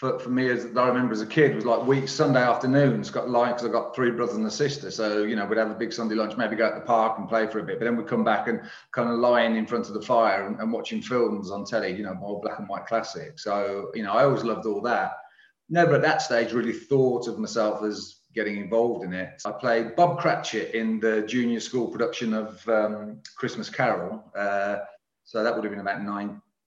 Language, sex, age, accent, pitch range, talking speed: English, male, 30-49, British, 105-125 Hz, 250 wpm